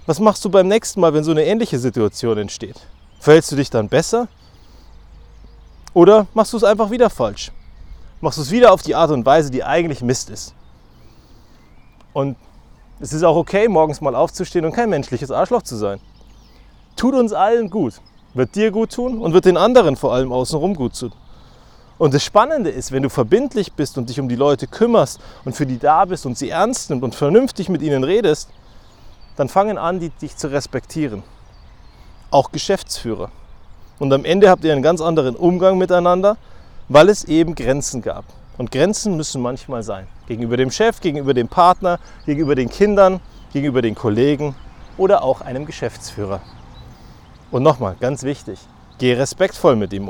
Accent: German